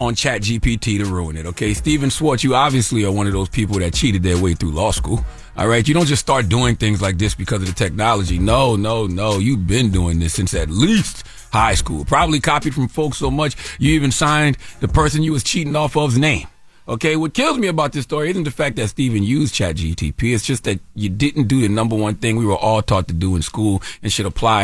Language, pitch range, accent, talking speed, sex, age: English, 105-150 Hz, American, 245 wpm, male, 30-49